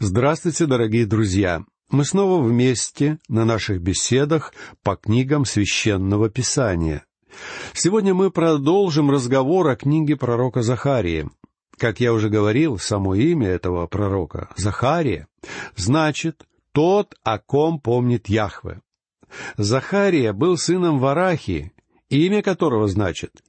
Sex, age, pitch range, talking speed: male, 60-79, 110-160 Hz, 110 wpm